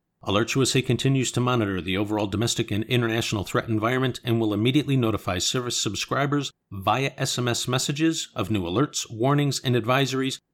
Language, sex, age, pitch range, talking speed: English, male, 50-69, 110-130 Hz, 150 wpm